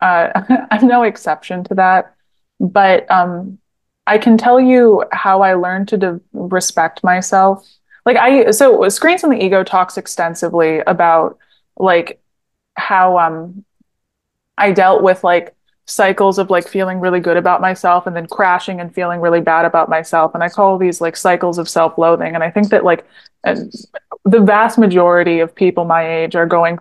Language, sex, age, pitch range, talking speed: English, female, 20-39, 170-195 Hz, 170 wpm